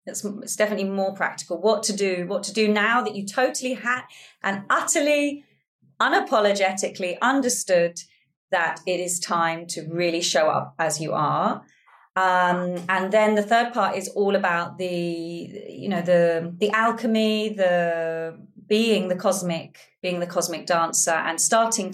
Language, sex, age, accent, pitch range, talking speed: English, female, 30-49, British, 175-215 Hz, 155 wpm